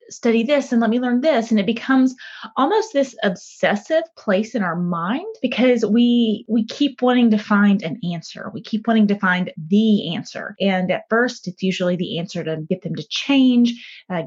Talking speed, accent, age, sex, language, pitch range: 195 wpm, American, 20-39, female, English, 190-260 Hz